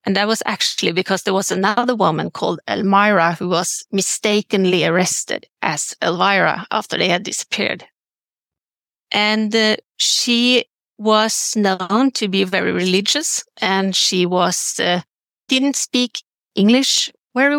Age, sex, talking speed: 30-49, female, 130 wpm